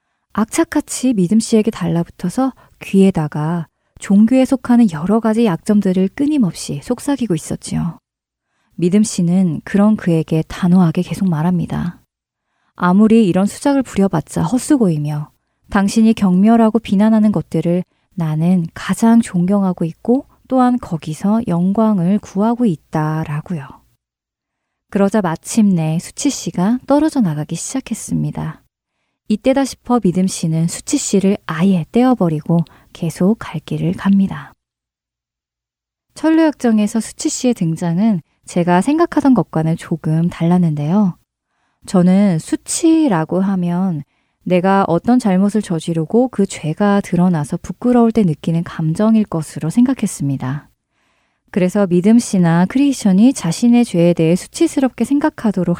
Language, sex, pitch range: Korean, female, 170-230 Hz